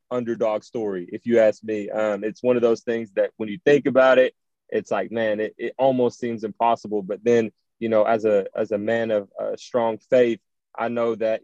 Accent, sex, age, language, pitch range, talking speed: American, male, 20-39, English, 105-120 Hz, 225 wpm